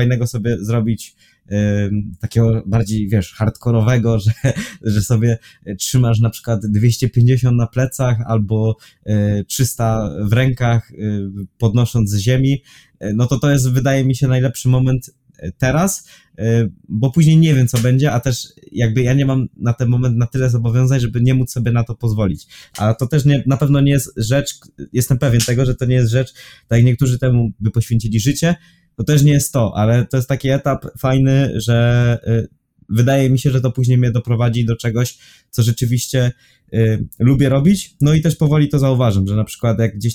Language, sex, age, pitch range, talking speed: Polish, male, 20-39, 115-135 Hz, 175 wpm